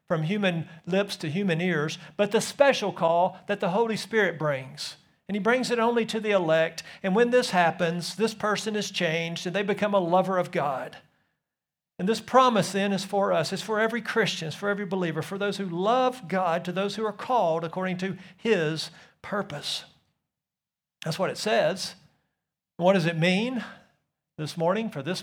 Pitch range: 165-210 Hz